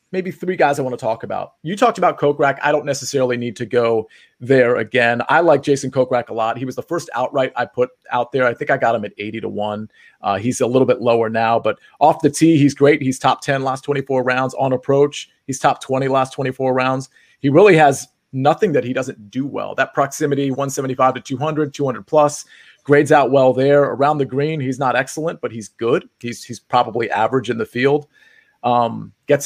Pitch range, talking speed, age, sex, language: 125-145 Hz, 220 wpm, 30-49, male, English